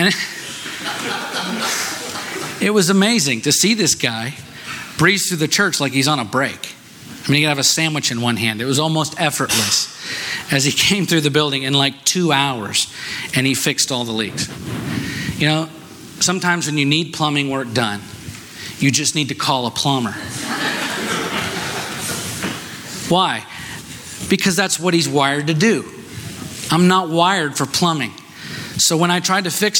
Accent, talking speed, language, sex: American, 165 wpm, English, male